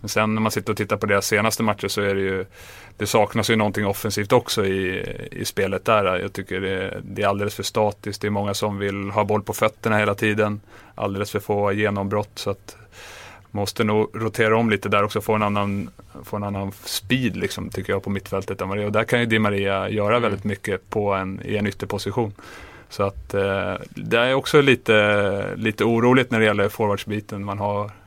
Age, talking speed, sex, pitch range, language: 30-49, 205 wpm, male, 100-110 Hz, Swedish